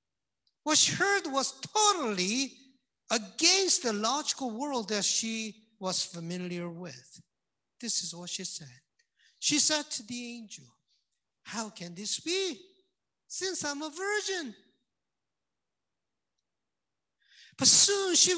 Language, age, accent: English, 50-69, Japanese